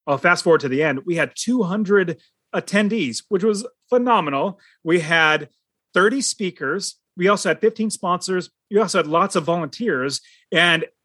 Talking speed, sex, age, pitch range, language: 155 wpm, male, 30-49, 150-210 Hz, English